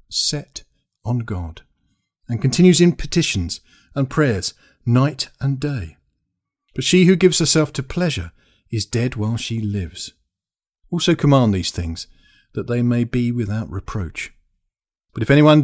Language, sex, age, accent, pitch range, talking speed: English, male, 50-69, British, 100-140 Hz, 140 wpm